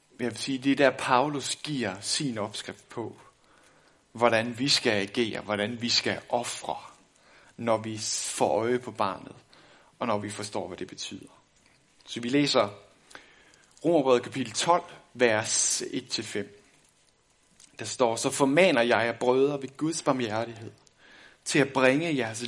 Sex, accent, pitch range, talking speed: male, native, 115-145 Hz, 145 wpm